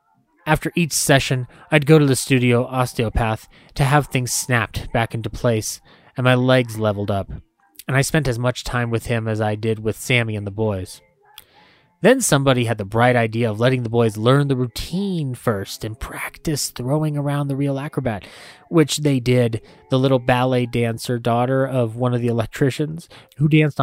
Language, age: English, 20-39